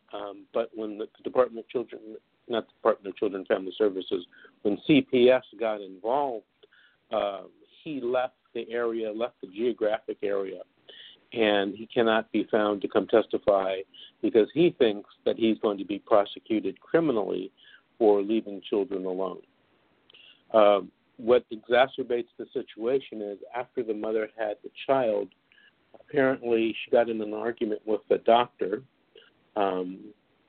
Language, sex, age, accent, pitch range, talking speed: English, male, 50-69, American, 105-125 Hz, 140 wpm